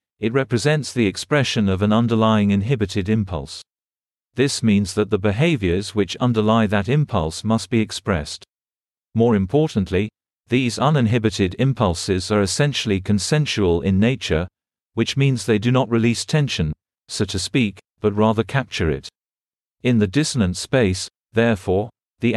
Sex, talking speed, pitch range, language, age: male, 135 wpm, 100-120 Hz, English, 40-59